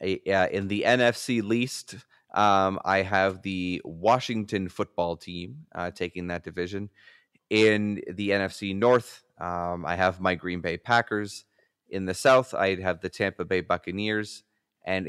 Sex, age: male, 30-49